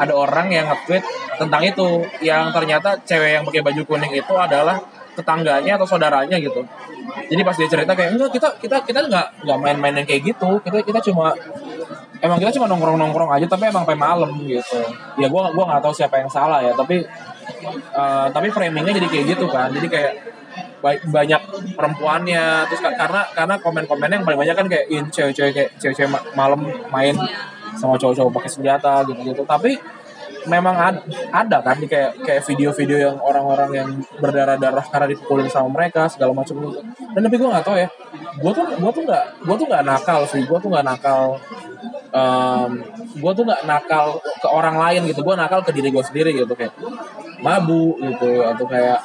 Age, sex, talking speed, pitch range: 20-39, male, 185 wpm, 140-185 Hz